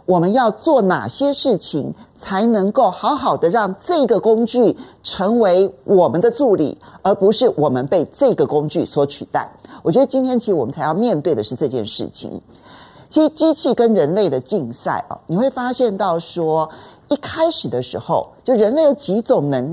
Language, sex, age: Chinese, male, 40-59